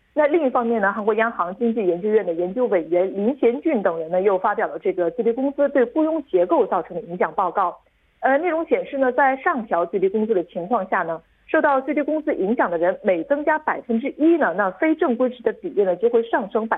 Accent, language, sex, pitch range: Chinese, Korean, female, 205-295 Hz